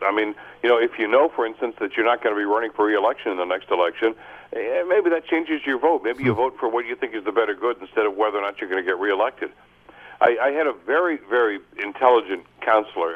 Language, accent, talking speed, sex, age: English, American, 255 wpm, male, 60-79